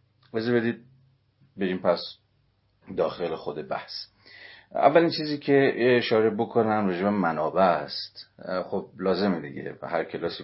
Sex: male